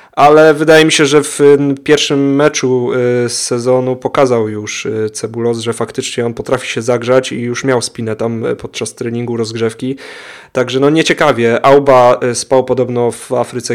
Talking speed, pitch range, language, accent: 155 wpm, 120-140 Hz, Polish, native